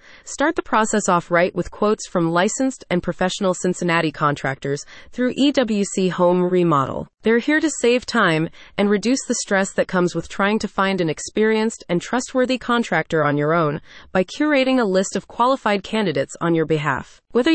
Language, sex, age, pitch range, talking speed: English, female, 30-49, 170-240 Hz, 175 wpm